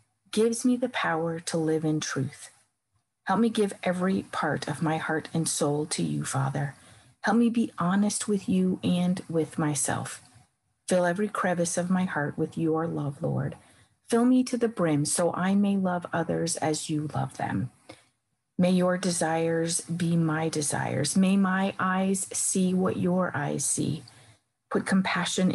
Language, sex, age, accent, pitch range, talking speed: English, female, 40-59, American, 140-185 Hz, 165 wpm